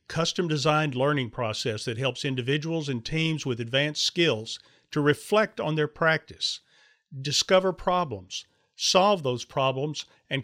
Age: 50-69